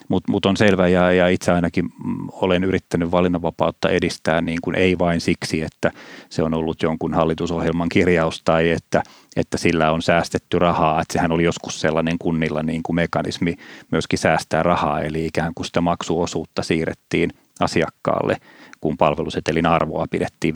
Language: Finnish